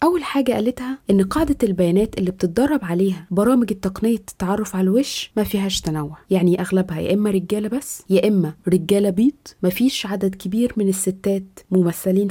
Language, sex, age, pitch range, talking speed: Arabic, female, 20-39, 185-230 Hz, 165 wpm